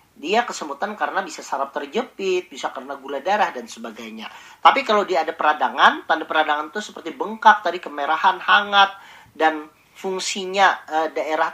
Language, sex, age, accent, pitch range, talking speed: Indonesian, male, 40-59, native, 155-225 Hz, 150 wpm